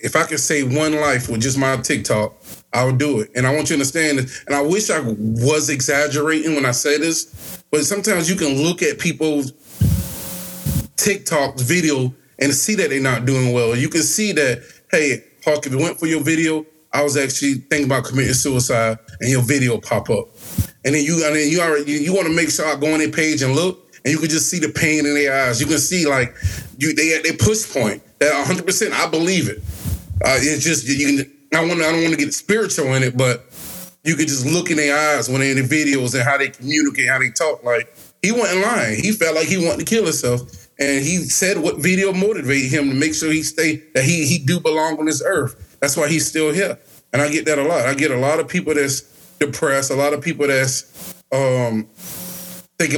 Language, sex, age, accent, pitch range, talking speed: English, male, 30-49, American, 135-160 Hz, 235 wpm